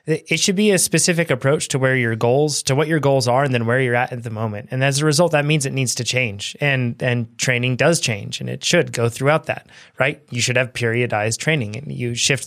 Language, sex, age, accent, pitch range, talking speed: English, male, 20-39, American, 120-145 Hz, 255 wpm